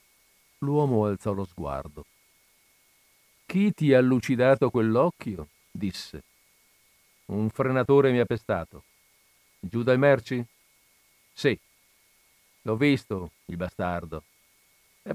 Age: 50-69